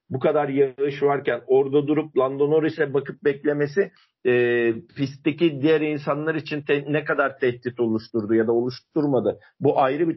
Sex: male